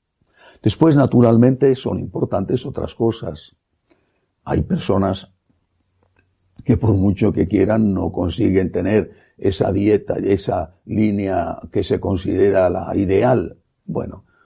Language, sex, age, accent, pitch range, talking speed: Spanish, male, 60-79, Spanish, 95-120 Hz, 110 wpm